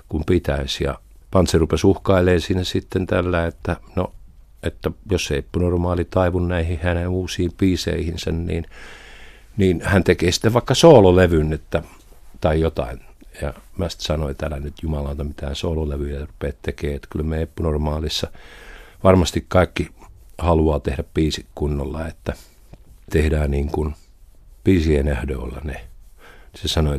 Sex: male